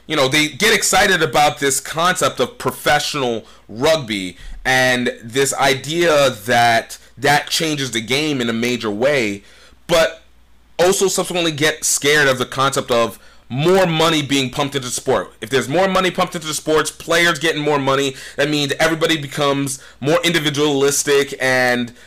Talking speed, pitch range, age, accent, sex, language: 160 wpm, 120-150 Hz, 30-49, American, male, English